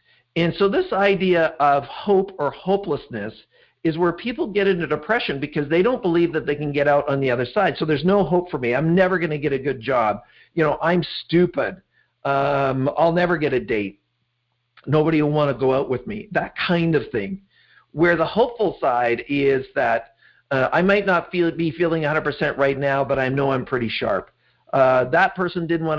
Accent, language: American, English